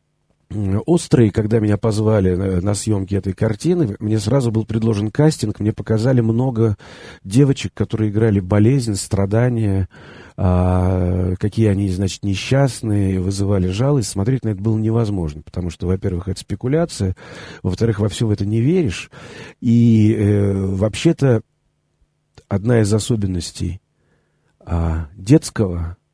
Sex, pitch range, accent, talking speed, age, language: male, 95-115 Hz, native, 115 wpm, 40-59, Russian